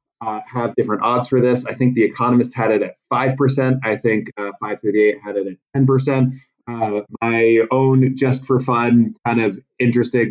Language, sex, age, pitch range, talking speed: English, male, 30-49, 115-135 Hz, 175 wpm